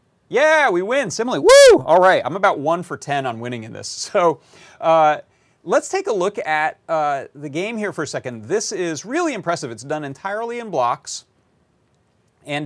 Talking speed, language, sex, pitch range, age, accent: 190 wpm, English, male, 120-160 Hz, 30-49, American